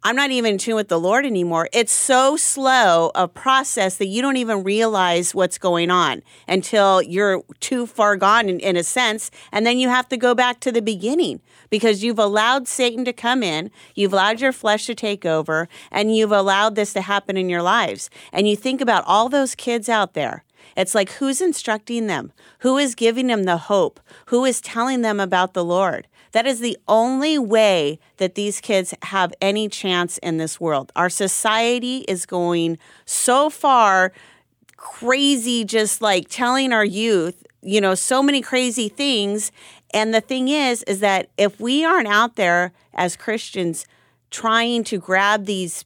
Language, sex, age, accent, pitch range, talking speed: English, female, 40-59, American, 185-240 Hz, 185 wpm